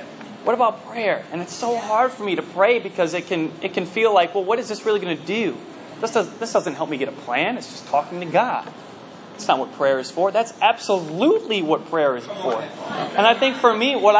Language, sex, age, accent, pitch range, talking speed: English, male, 20-39, American, 175-230 Hz, 245 wpm